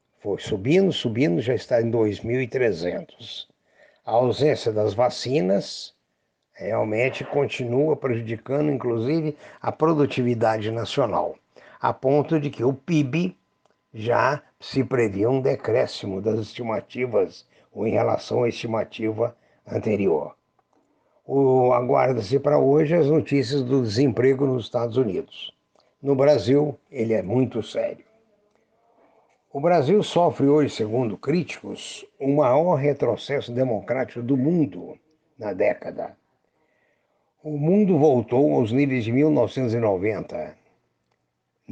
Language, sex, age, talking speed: Portuguese, male, 60-79, 105 wpm